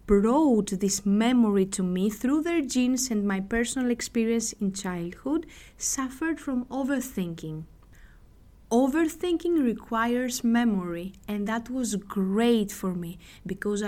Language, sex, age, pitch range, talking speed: Greek, female, 20-39, 200-285 Hz, 115 wpm